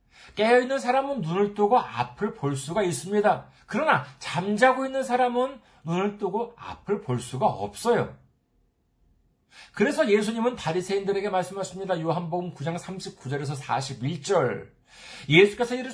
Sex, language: male, Korean